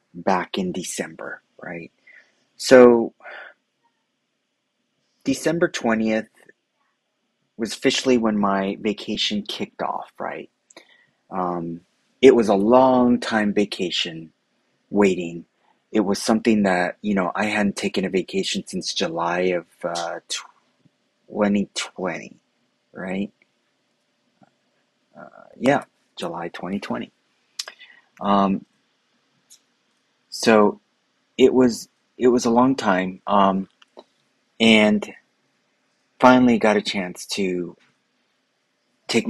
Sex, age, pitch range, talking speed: male, 30-49, 95-120 Hz, 90 wpm